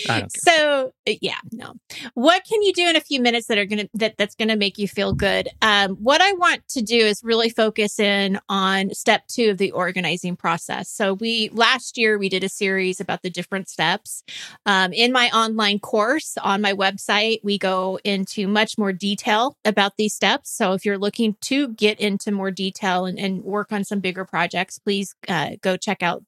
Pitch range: 190-230 Hz